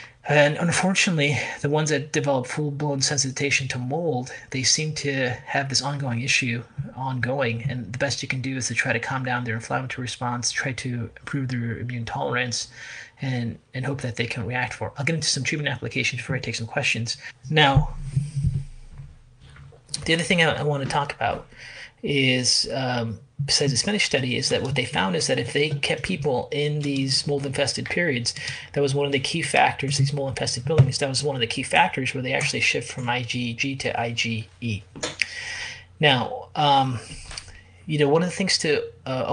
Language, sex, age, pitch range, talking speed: English, male, 30-49, 120-145 Hz, 190 wpm